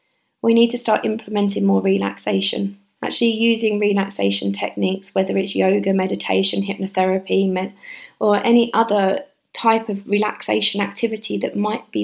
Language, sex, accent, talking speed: English, female, British, 135 wpm